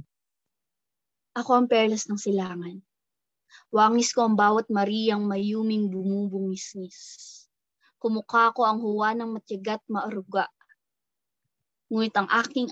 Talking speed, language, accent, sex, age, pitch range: 105 wpm, Filipino, native, female, 20-39, 200-235 Hz